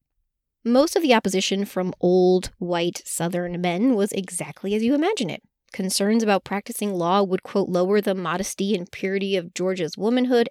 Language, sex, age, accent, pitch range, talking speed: English, female, 20-39, American, 180-215 Hz, 165 wpm